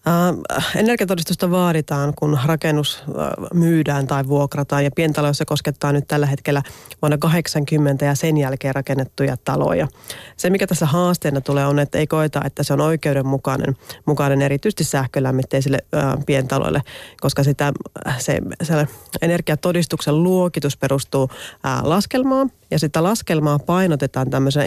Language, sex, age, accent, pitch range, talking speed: Finnish, female, 30-49, native, 140-170 Hz, 130 wpm